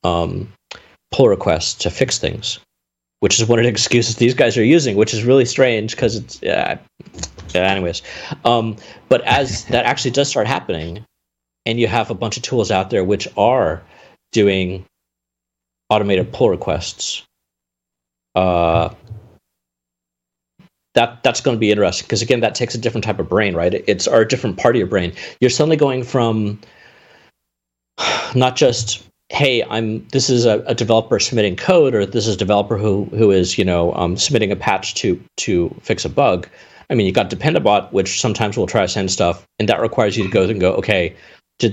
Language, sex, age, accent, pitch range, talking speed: English, male, 40-59, American, 85-115 Hz, 185 wpm